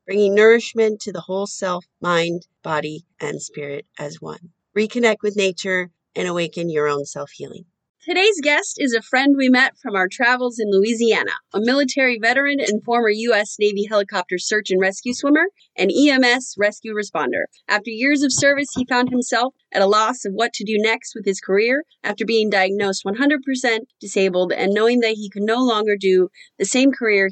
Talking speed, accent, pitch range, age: 180 wpm, American, 190-250 Hz, 30-49